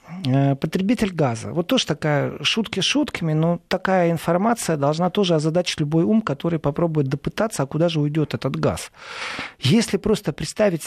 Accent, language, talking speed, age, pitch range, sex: native, Russian, 150 wpm, 40-59, 135-175 Hz, male